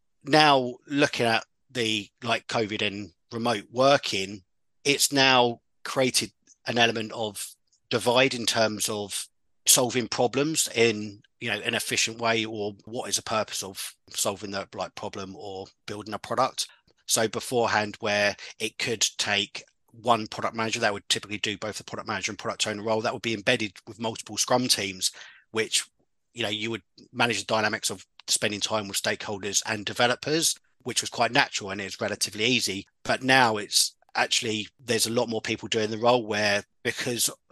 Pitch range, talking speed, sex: 105-120 Hz, 170 wpm, male